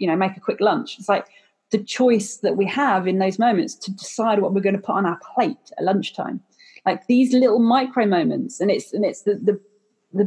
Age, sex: 30-49, female